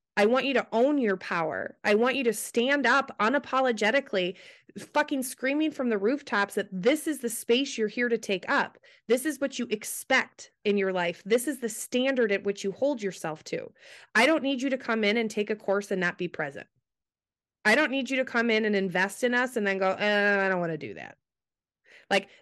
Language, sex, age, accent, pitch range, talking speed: English, female, 20-39, American, 195-275 Hz, 220 wpm